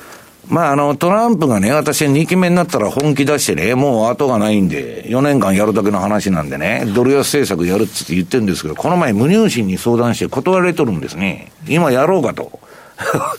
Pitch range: 105-160 Hz